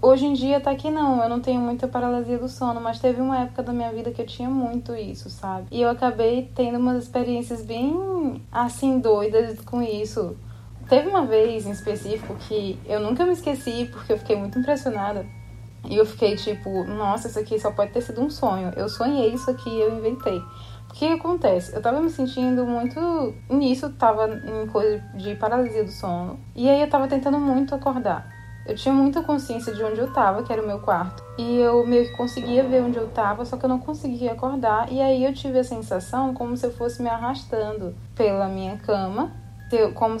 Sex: female